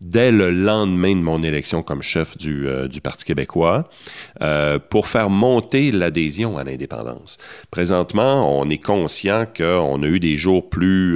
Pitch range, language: 75-95 Hz, French